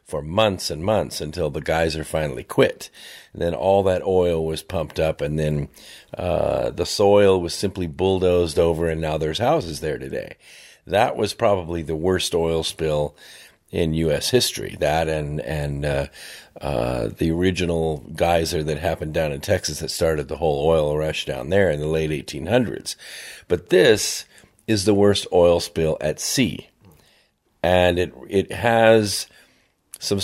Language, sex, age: English, male, 50-69